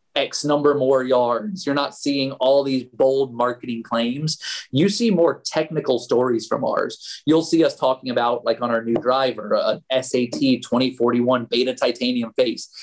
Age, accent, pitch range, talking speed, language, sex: 30-49, American, 120-150 Hz, 170 wpm, English, male